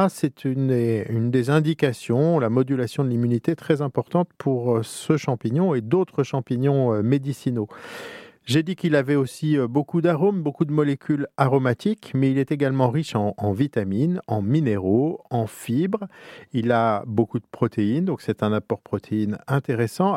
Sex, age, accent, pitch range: male, 50-69, French, 115-155 Hz